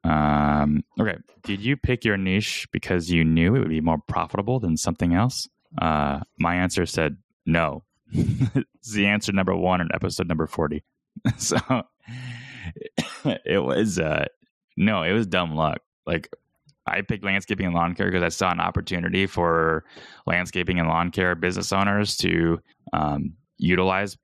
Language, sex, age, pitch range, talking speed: English, male, 10-29, 80-100 Hz, 155 wpm